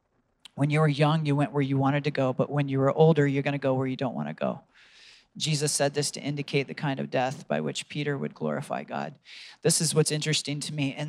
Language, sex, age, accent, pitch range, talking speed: English, male, 40-59, American, 140-165 Hz, 260 wpm